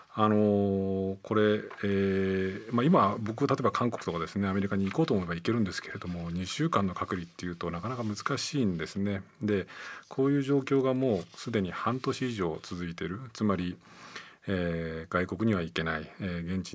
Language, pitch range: Japanese, 90-110 Hz